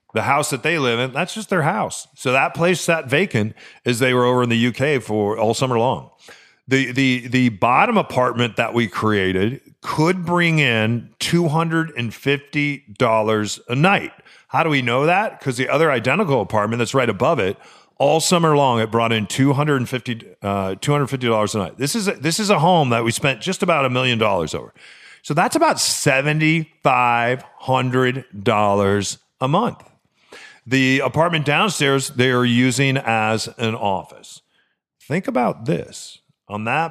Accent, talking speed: American, 165 wpm